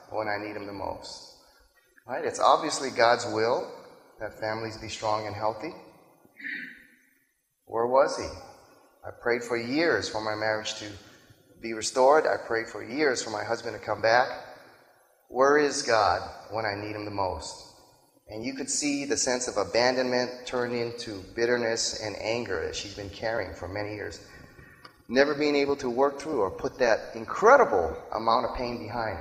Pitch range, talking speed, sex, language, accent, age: 105-125 Hz, 170 wpm, male, English, American, 30-49